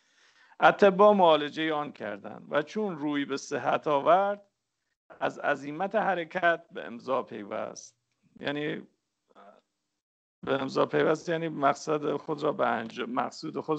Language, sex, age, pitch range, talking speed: English, male, 50-69, 140-180 Hz, 100 wpm